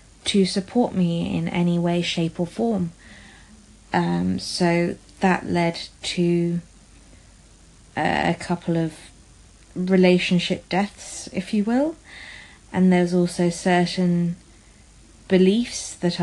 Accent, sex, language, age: British, female, English, 30-49